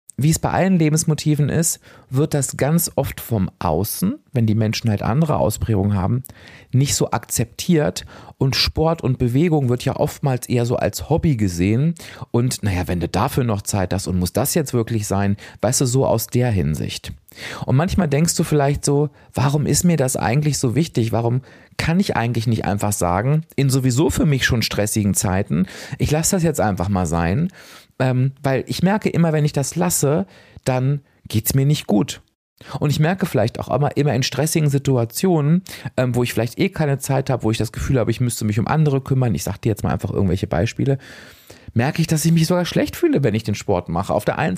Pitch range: 110-155 Hz